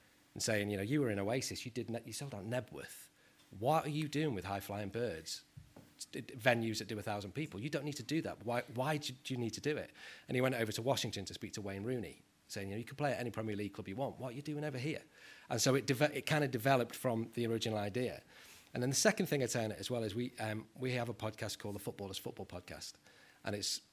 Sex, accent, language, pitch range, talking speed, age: male, British, English, 100-130 Hz, 280 wpm, 30-49